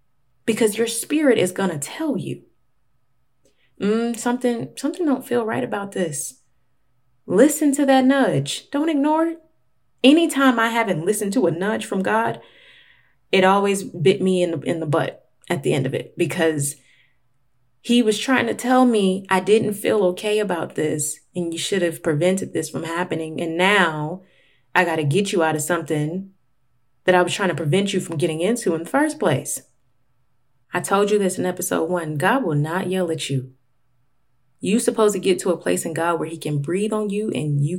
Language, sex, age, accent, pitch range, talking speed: English, female, 20-39, American, 135-220 Hz, 190 wpm